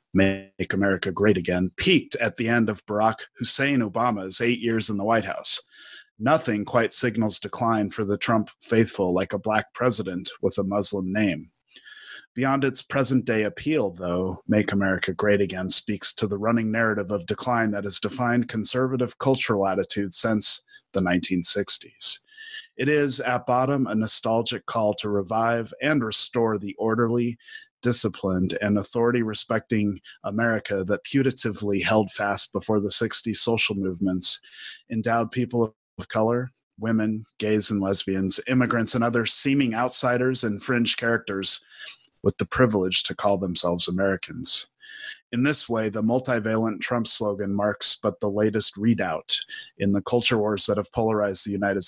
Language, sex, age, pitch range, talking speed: English, male, 30-49, 100-120 Hz, 150 wpm